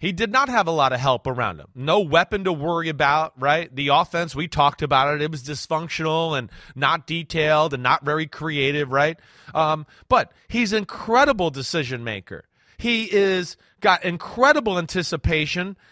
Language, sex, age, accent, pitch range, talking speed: English, male, 30-49, American, 155-215 Hz, 170 wpm